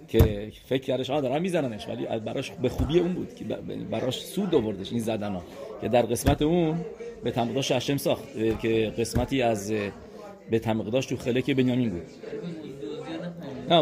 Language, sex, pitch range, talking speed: English, male, 115-145 Hz, 150 wpm